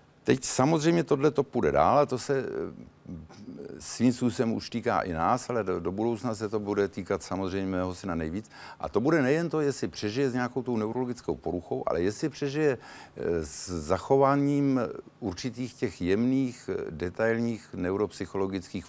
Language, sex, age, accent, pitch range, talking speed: Czech, male, 60-79, native, 90-125 Hz, 155 wpm